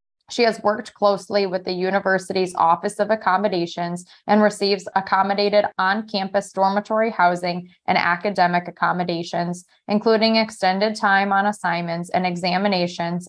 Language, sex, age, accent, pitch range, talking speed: English, female, 20-39, American, 180-205 Hz, 115 wpm